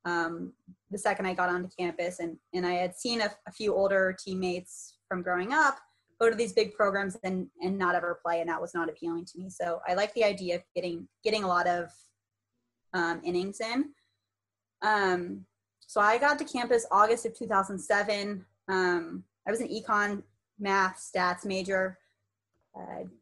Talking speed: 180 wpm